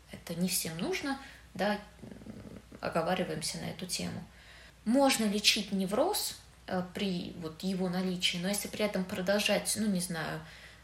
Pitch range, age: 170-195 Hz, 20-39